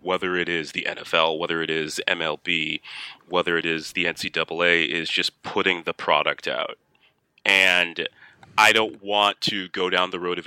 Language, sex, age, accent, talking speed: English, male, 30-49, American, 170 wpm